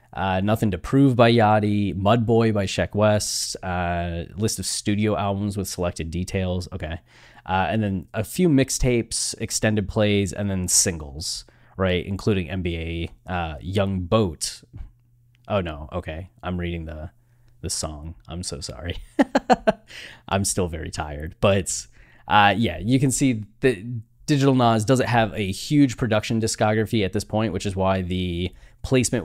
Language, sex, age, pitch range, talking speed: English, male, 20-39, 90-115 Hz, 155 wpm